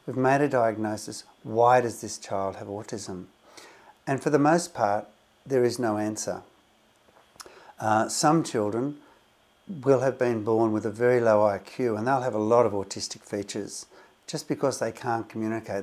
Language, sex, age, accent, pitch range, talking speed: English, male, 60-79, Australian, 110-135 Hz, 165 wpm